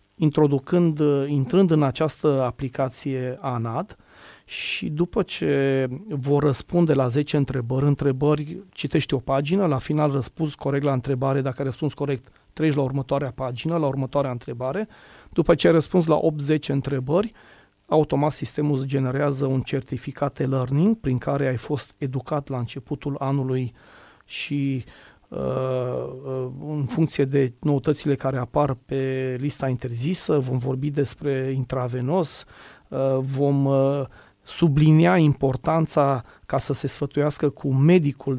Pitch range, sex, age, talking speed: 130-150 Hz, male, 30-49, 125 wpm